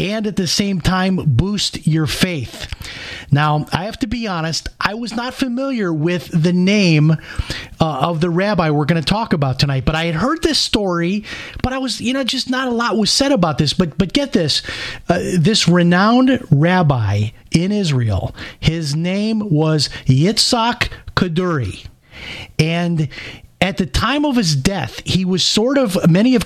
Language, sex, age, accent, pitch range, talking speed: English, male, 30-49, American, 155-210 Hz, 180 wpm